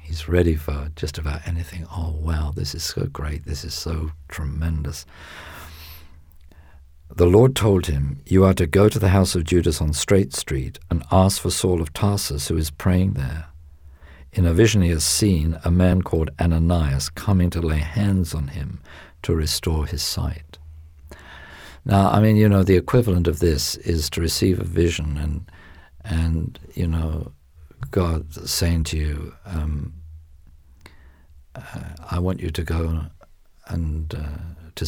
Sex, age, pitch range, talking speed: male, 50-69, 75-90 Hz, 160 wpm